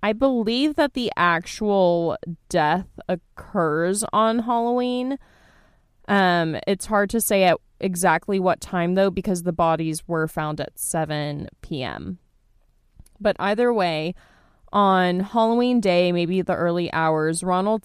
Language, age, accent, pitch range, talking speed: English, 20-39, American, 165-205 Hz, 130 wpm